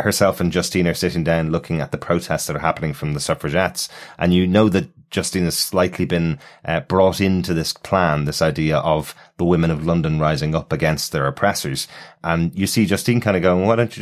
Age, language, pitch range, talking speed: 30-49, English, 75-90 Hz, 220 wpm